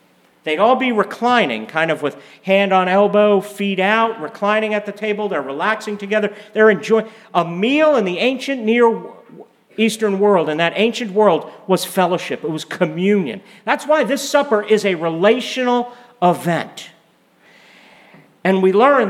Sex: male